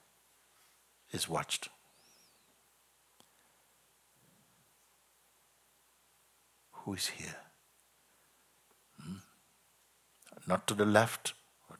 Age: 60-79